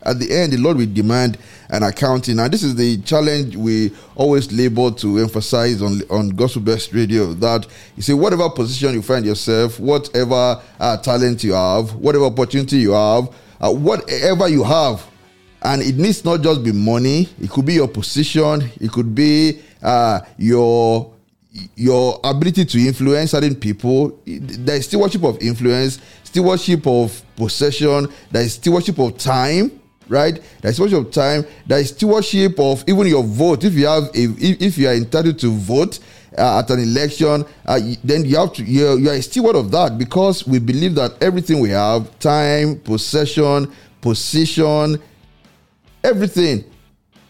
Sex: male